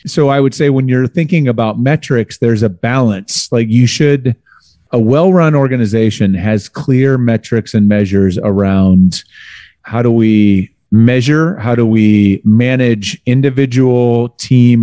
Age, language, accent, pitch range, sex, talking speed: 30-49, English, American, 105-125 Hz, male, 140 wpm